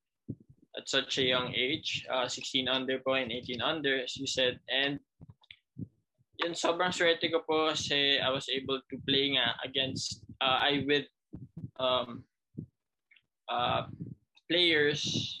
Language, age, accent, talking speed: Filipino, 20-39, native, 115 wpm